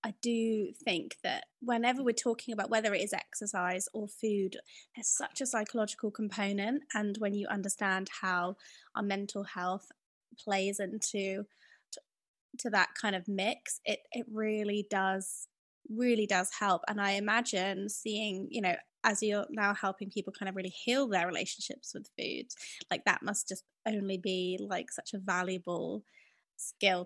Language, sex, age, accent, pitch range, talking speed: English, female, 20-39, British, 195-230 Hz, 160 wpm